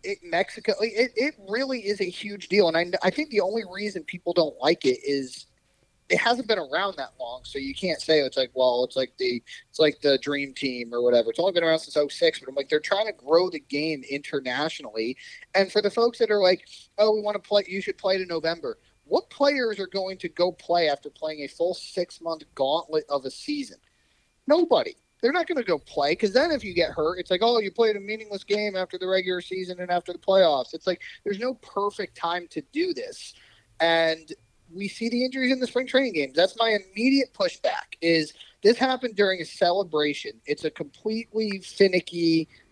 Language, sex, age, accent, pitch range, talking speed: English, male, 30-49, American, 150-220 Hz, 220 wpm